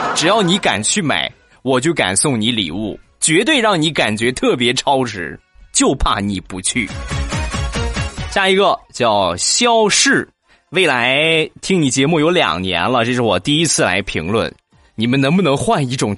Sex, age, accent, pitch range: male, 20-39, native, 115-170 Hz